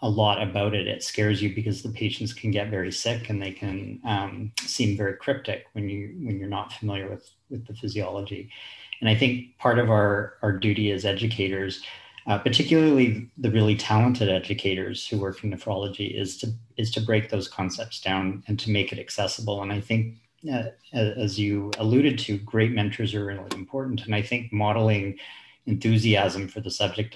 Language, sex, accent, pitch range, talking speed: English, male, American, 100-115 Hz, 190 wpm